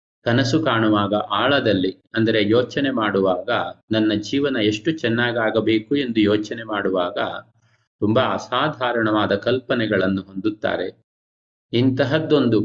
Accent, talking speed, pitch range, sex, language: native, 85 wpm, 105-130 Hz, male, Kannada